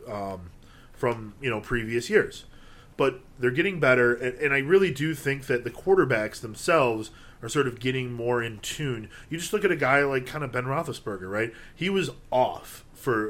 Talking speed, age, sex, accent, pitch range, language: 195 wpm, 30-49, male, American, 105-135 Hz, English